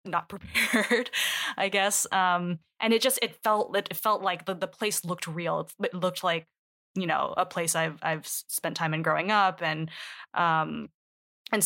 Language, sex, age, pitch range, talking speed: English, female, 20-39, 165-190 Hz, 185 wpm